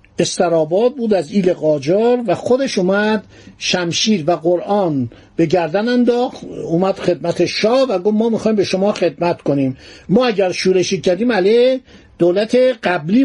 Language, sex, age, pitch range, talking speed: Persian, male, 60-79, 170-220 Hz, 140 wpm